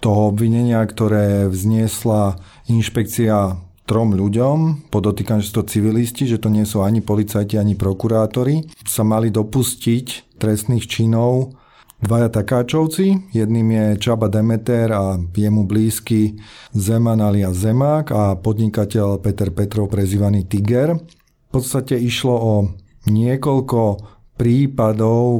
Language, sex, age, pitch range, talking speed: Slovak, male, 30-49, 105-120 Hz, 110 wpm